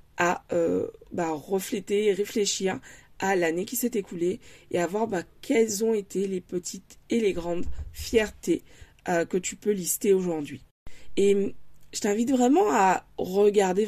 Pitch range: 175-220 Hz